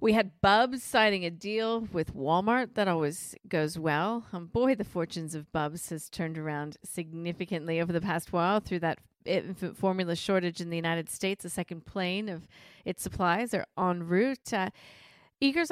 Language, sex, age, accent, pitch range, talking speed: English, female, 40-59, American, 170-205 Hz, 175 wpm